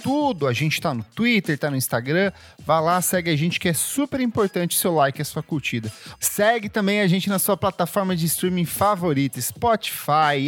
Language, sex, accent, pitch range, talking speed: Portuguese, male, Brazilian, 150-200 Hz, 200 wpm